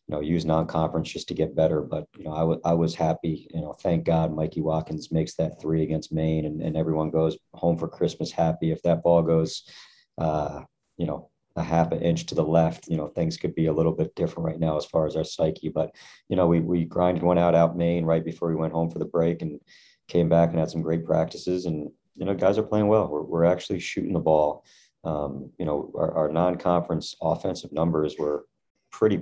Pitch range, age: 80-85 Hz, 40-59